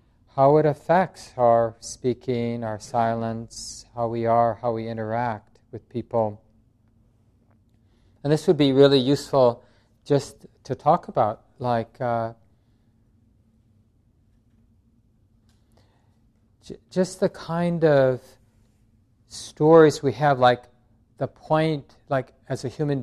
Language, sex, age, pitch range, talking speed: English, male, 40-59, 115-140 Hz, 105 wpm